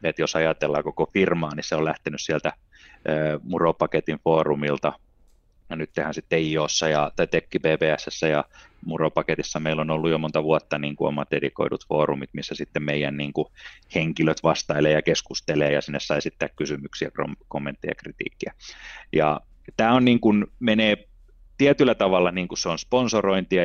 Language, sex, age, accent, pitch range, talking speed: Finnish, male, 30-49, native, 75-95 Hz, 155 wpm